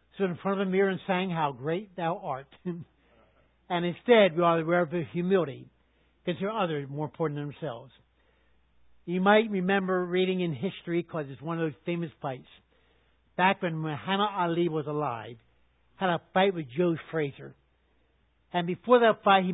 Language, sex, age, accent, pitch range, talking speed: English, male, 60-79, American, 145-195 Hz, 180 wpm